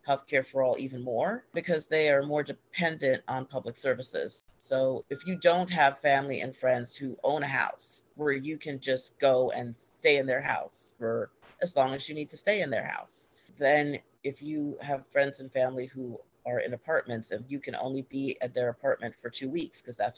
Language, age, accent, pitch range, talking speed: English, 40-59, American, 130-150 Hz, 210 wpm